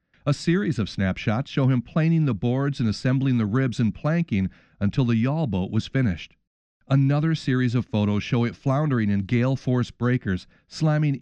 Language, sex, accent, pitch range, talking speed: English, male, American, 110-140 Hz, 175 wpm